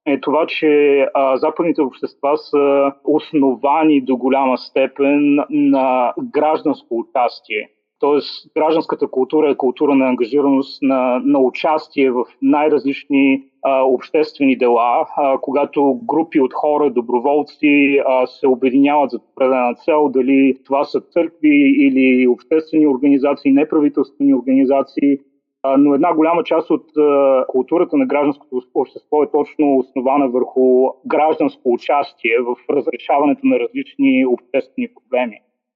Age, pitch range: 30-49, 130-150 Hz